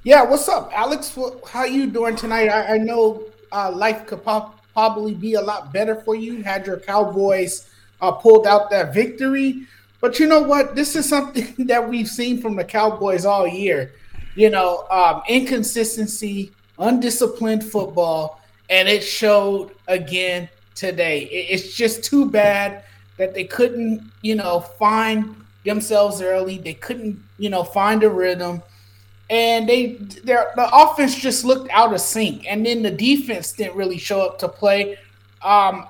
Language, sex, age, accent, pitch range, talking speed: English, male, 20-39, American, 185-235 Hz, 160 wpm